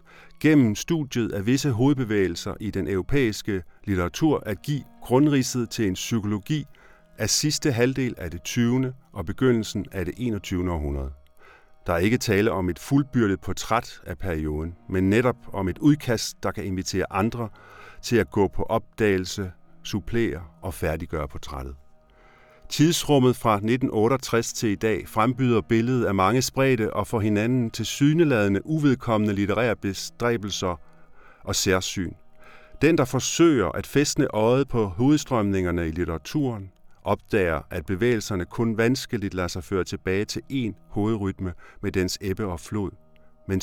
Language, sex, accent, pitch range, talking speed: Danish, male, native, 95-120 Hz, 145 wpm